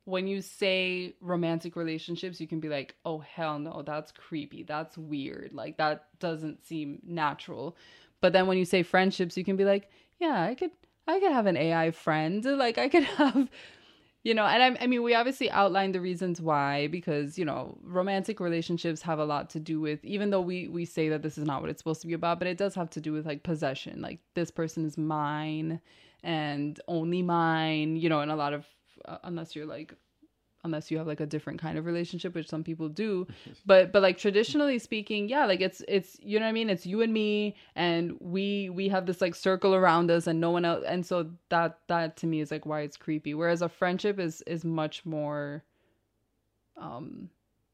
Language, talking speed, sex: English, 215 wpm, female